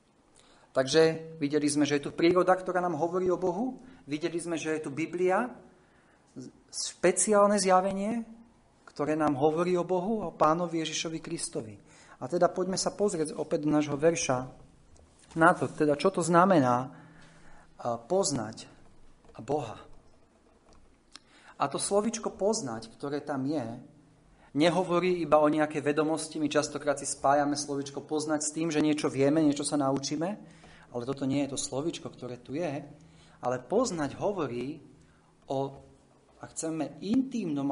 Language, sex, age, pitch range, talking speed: Slovak, male, 40-59, 135-175 Hz, 140 wpm